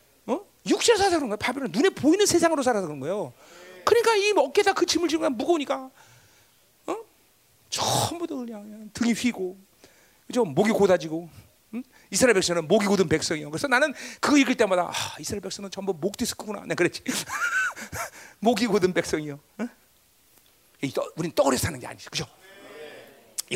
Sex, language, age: male, Korean, 40-59